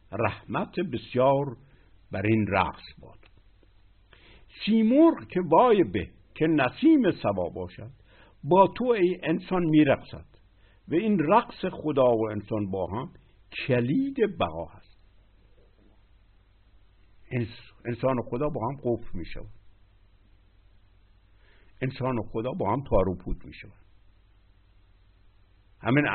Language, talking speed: Persian, 100 wpm